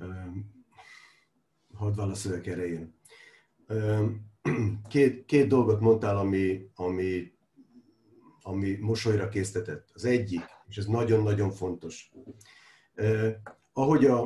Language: Hungarian